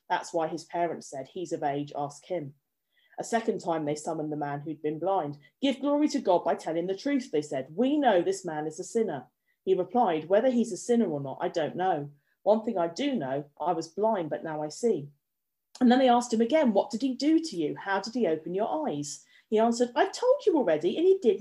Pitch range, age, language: 155-245 Hz, 40-59, English